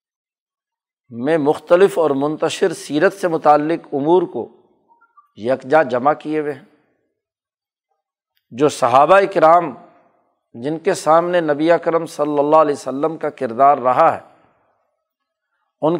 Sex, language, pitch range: male, Urdu, 140-195 Hz